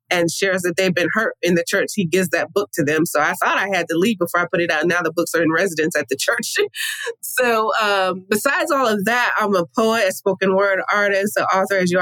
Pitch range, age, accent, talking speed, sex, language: 175-220 Hz, 20-39, American, 265 wpm, female, English